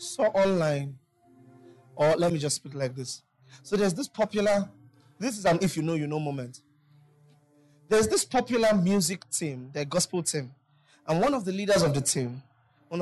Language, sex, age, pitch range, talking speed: English, male, 20-39, 145-185 Hz, 190 wpm